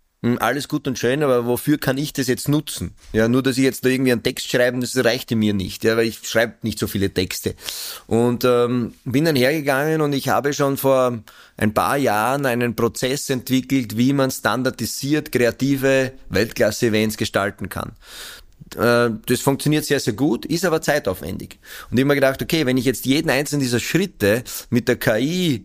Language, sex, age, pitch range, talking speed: German, male, 30-49, 120-135 Hz, 190 wpm